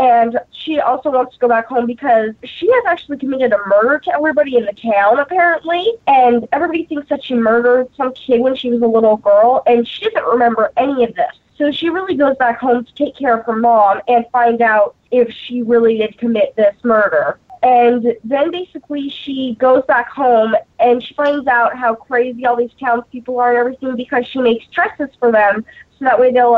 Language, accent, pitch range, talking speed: English, American, 230-275 Hz, 210 wpm